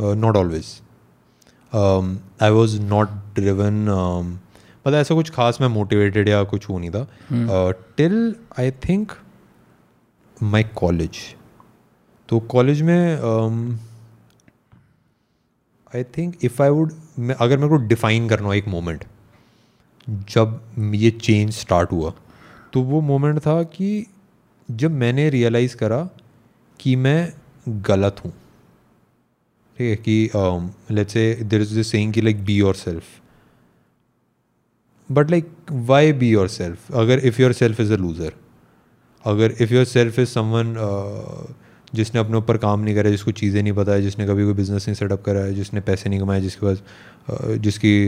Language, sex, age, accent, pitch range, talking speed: Hindi, male, 30-49, native, 100-125 Hz, 135 wpm